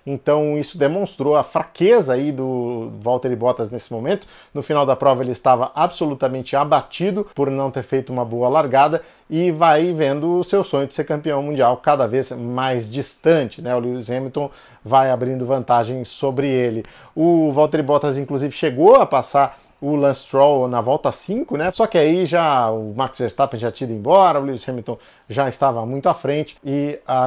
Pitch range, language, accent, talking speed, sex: 130-155 Hz, Portuguese, Brazilian, 185 wpm, male